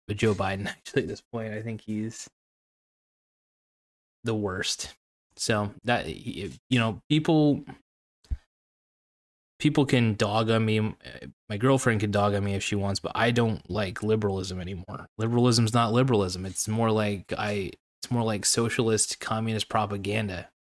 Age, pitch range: 20-39, 105-125 Hz